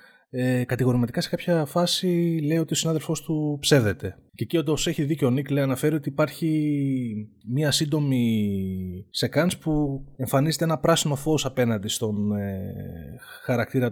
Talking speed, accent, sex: 140 wpm, native, male